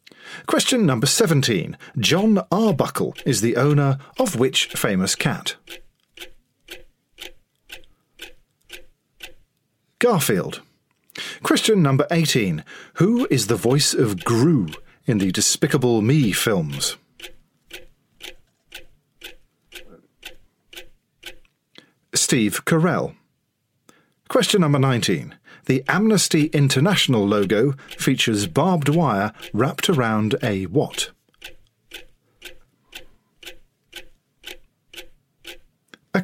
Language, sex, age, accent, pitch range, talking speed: English, male, 40-59, British, 120-170 Hz, 75 wpm